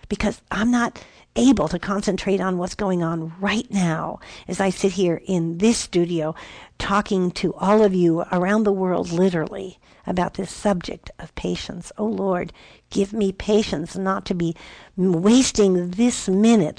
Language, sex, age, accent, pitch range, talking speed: English, female, 50-69, American, 165-195 Hz, 155 wpm